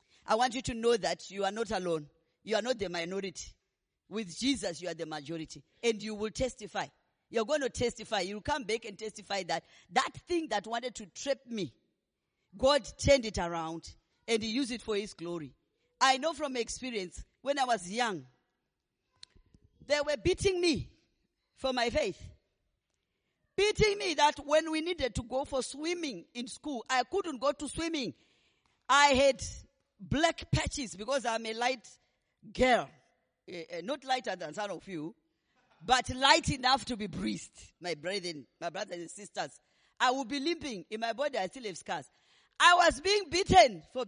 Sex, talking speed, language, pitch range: female, 175 wpm, English, 205-305 Hz